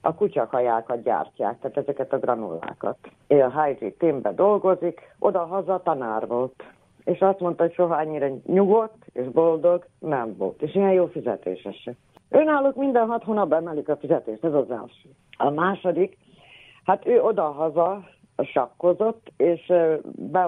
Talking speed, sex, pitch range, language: 140 wpm, female, 135-185 Hz, Hungarian